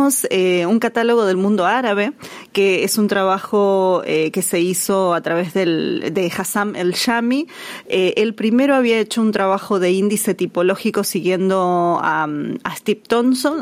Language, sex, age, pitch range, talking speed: Spanish, female, 20-39, 185-230 Hz, 160 wpm